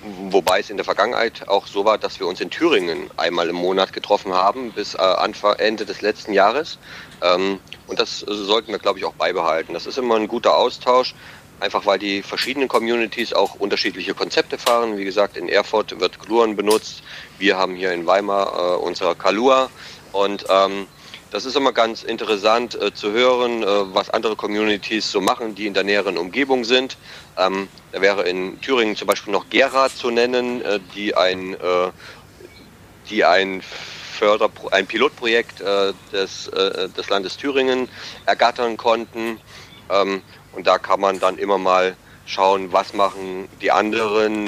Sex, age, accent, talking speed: male, 40-59, German, 165 wpm